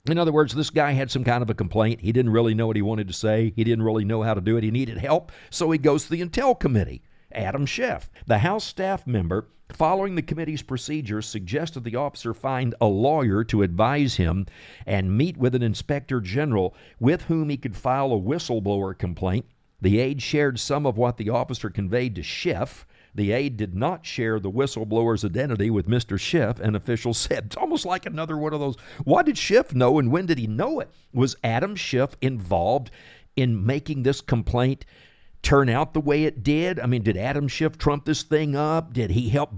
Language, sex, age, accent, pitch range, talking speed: English, male, 50-69, American, 110-150 Hz, 210 wpm